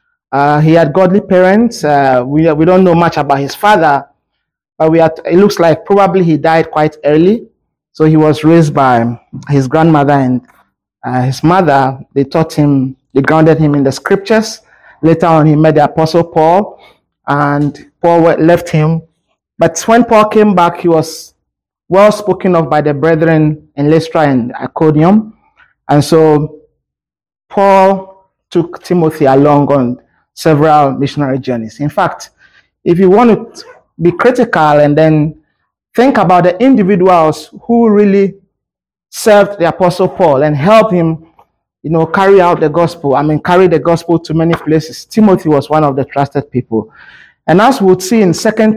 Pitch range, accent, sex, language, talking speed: 150-190 Hz, Nigerian, male, English, 165 wpm